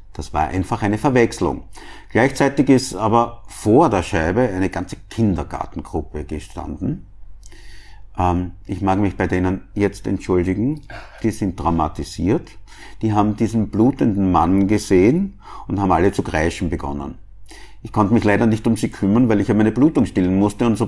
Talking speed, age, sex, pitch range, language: 160 wpm, 50-69, male, 90-110 Hz, German